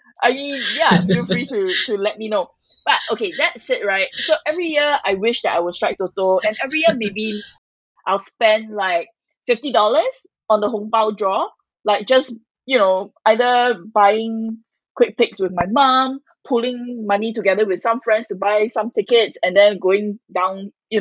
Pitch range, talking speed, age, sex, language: 180-250 Hz, 185 wpm, 20-39, female, English